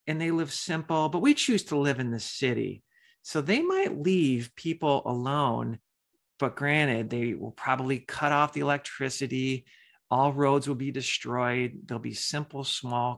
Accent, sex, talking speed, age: American, male, 165 wpm, 40-59